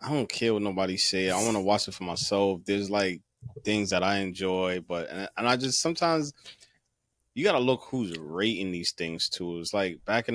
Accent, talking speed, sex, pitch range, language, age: American, 215 wpm, male, 90-115 Hz, English, 20-39